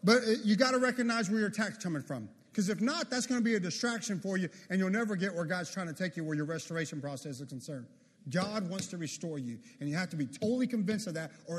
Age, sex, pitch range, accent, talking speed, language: 40-59, male, 190-260 Hz, American, 270 wpm, English